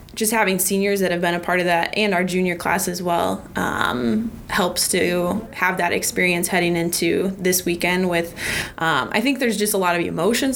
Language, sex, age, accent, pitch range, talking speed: English, female, 20-39, American, 175-205 Hz, 205 wpm